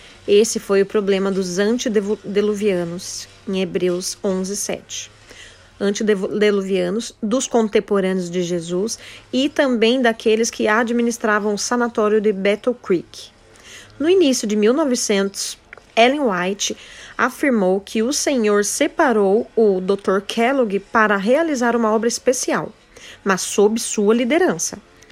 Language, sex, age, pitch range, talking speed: Portuguese, female, 40-59, 205-255 Hz, 110 wpm